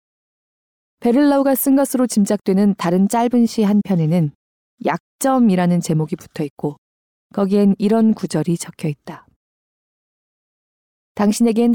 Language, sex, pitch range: Korean, female, 165-225 Hz